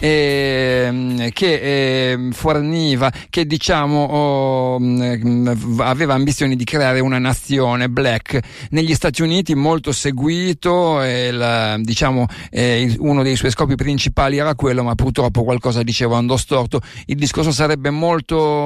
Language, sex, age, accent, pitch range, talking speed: Italian, male, 50-69, native, 125-150 Hz, 135 wpm